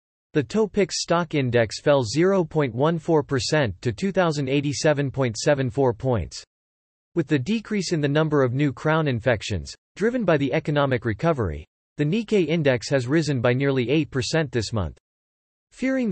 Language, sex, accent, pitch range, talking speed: English, male, American, 120-165 Hz, 130 wpm